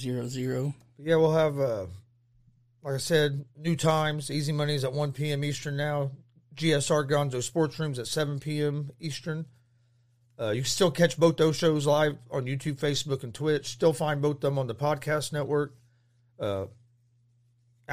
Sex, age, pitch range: male, 40-59, 120-145 Hz